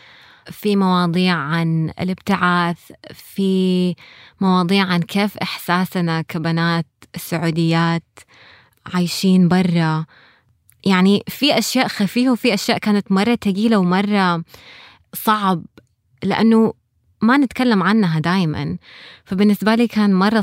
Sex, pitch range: female, 160-195 Hz